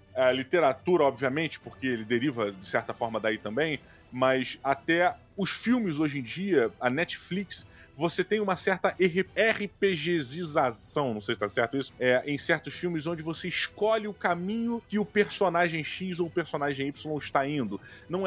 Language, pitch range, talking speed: Portuguese, 125-175 Hz, 170 wpm